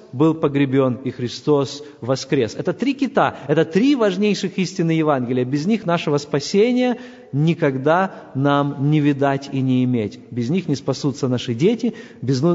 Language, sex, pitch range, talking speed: Russian, male, 145-215 Hz, 150 wpm